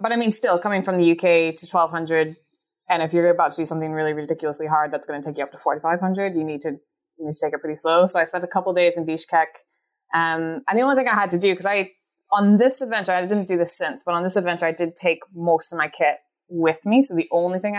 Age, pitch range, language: 20-39, 160-195 Hz, English